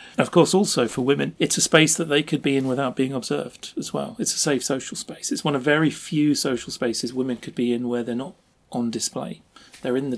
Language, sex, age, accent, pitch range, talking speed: English, male, 40-59, British, 120-145 Hz, 250 wpm